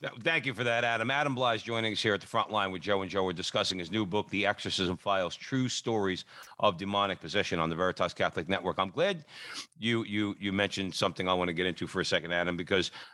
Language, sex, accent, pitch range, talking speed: English, male, American, 95-120 Hz, 245 wpm